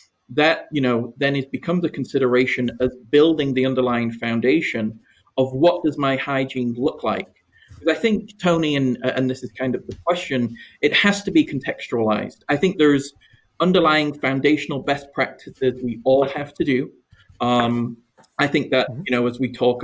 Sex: male